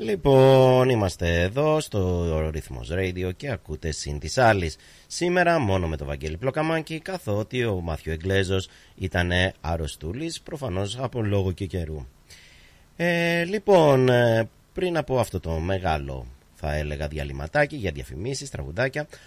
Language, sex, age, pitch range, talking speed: Greek, male, 30-49, 80-130 Hz, 130 wpm